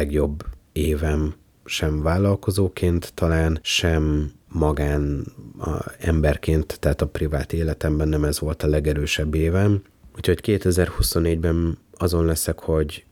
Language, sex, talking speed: Hungarian, male, 105 wpm